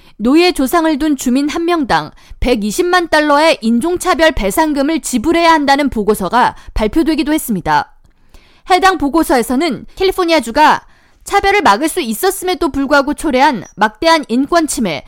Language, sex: Korean, female